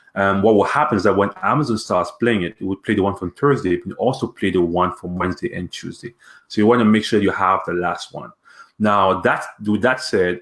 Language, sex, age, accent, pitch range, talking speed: English, male, 30-49, French, 90-110 Hz, 240 wpm